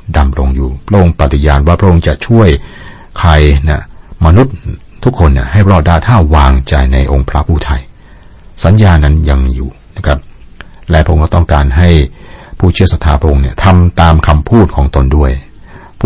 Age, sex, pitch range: 60-79, male, 70-90 Hz